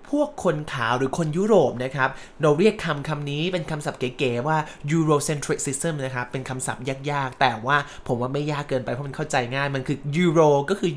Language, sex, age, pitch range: Thai, male, 20-39, 145-195 Hz